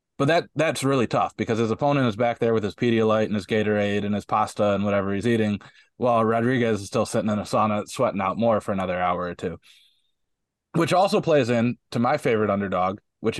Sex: male